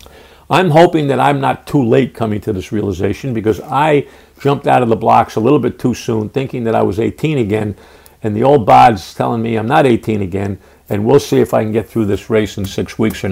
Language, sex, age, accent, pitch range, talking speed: English, male, 50-69, American, 110-145 Hz, 240 wpm